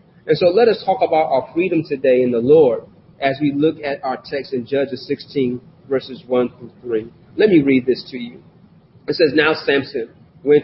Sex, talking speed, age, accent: male, 205 wpm, 40-59, American